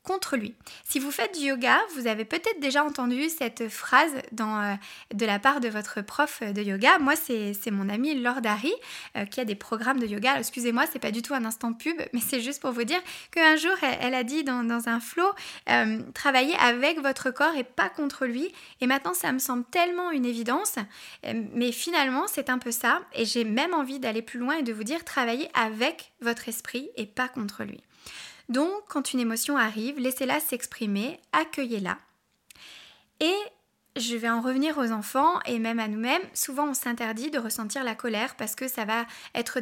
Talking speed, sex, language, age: 210 wpm, female, French, 20-39